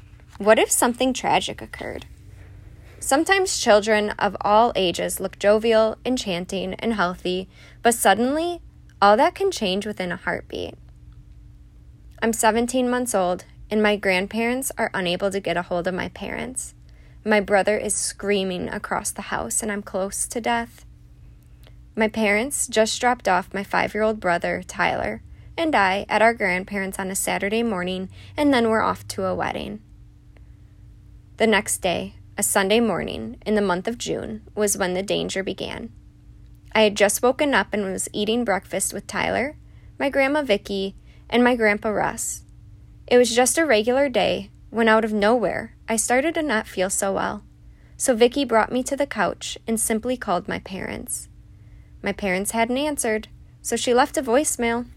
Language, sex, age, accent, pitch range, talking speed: English, female, 20-39, American, 185-235 Hz, 165 wpm